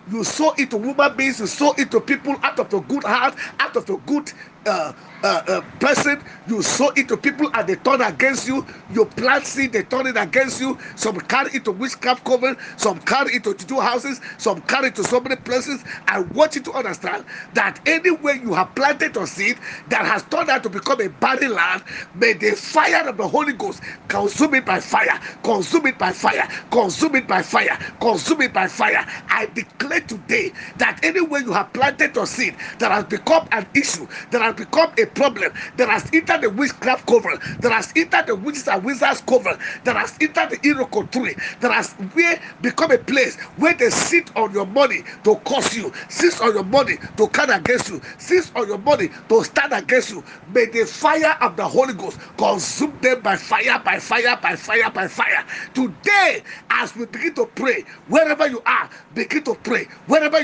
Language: English